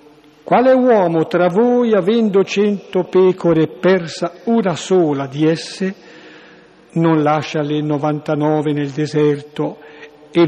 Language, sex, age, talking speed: Italian, male, 60-79, 115 wpm